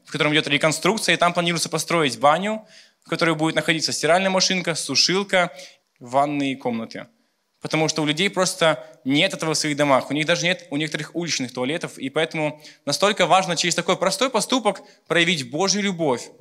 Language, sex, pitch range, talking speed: Russian, male, 145-180 Hz, 170 wpm